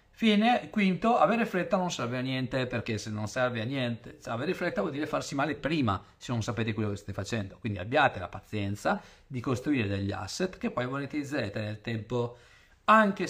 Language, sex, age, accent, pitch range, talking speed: Italian, male, 40-59, native, 110-175 Hz, 185 wpm